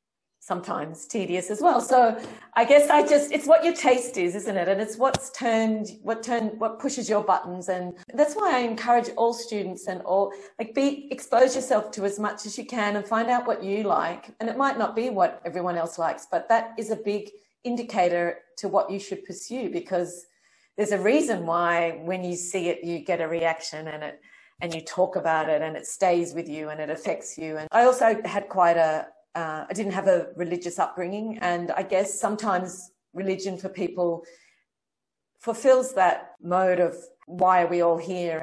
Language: English